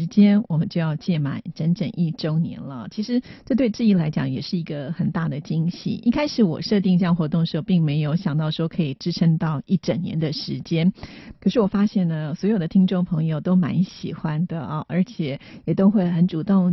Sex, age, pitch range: female, 30-49, 160-200 Hz